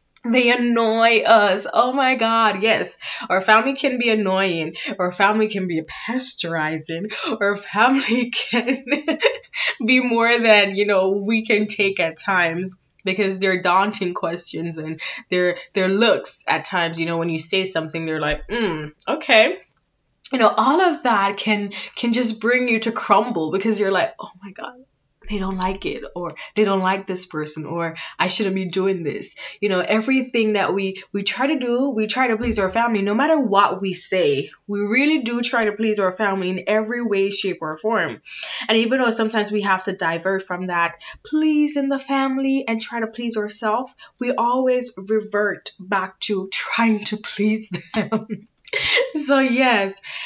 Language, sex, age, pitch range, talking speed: English, female, 20-39, 190-240 Hz, 175 wpm